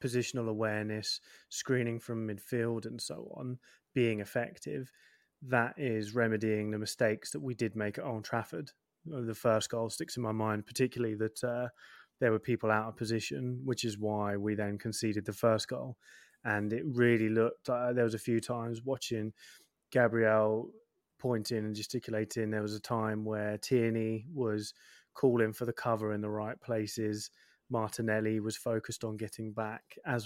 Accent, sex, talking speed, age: British, male, 165 wpm, 20-39